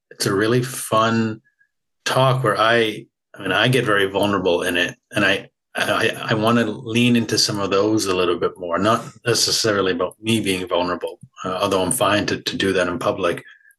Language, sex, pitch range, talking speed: English, male, 100-125 Hz, 200 wpm